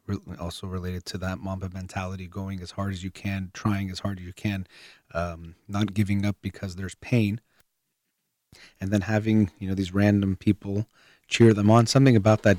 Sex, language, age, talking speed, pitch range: male, English, 30-49, 185 wpm, 95-105 Hz